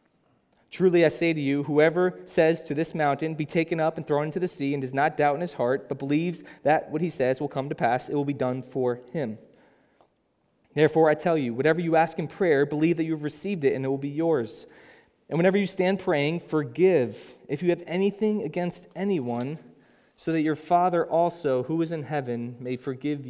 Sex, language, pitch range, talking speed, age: male, English, 140-175 Hz, 215 wpm, 20-39